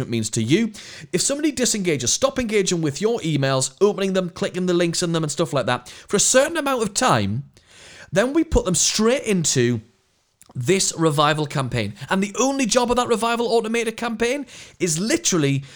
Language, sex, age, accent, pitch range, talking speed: English, male, 30-49, British, 130-205 Hz, 185 wpm